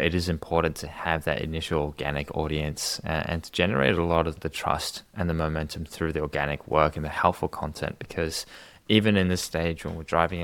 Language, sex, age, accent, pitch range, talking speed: English, male, 20-39, Australian, 80-90 Hz, 205 wpm